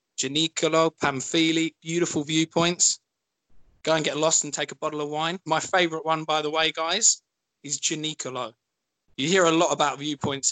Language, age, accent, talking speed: English, 20-39, British, 165 wpm